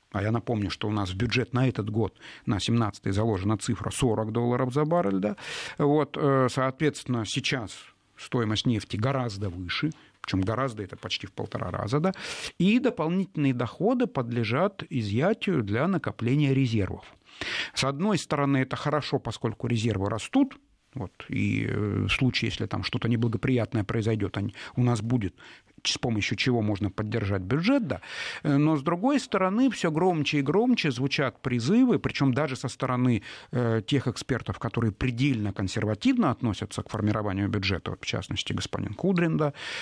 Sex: male